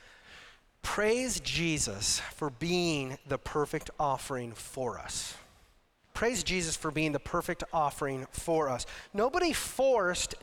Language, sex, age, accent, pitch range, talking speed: English, male, 30-49, American, 145-185 Hz, 115 wpm